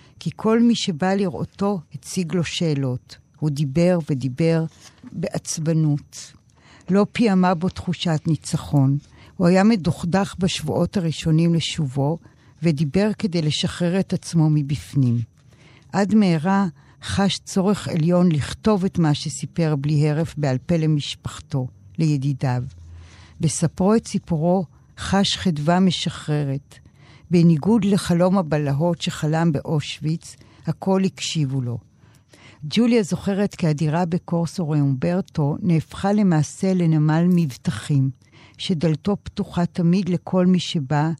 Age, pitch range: 50-69, 145-180 Hz